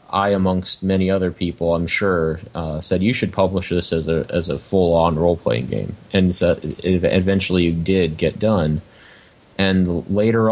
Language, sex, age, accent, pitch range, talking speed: English, male, 30-49, American, 90-105 Hz, 190 wpm